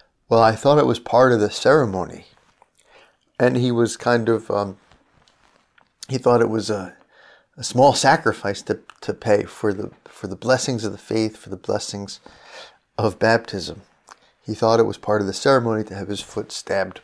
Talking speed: 185 wpm